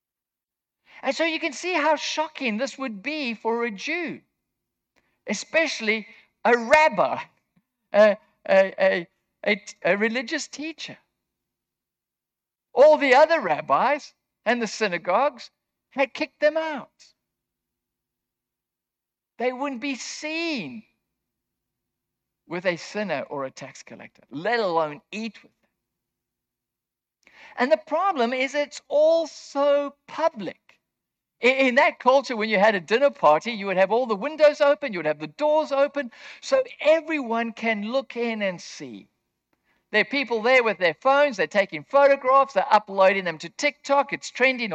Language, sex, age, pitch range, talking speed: English, male, 60-79, 195-290 Hz, 135 wpm